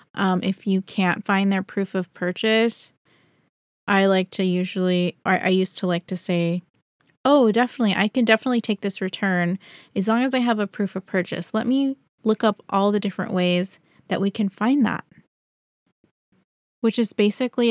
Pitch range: 180-220 Hz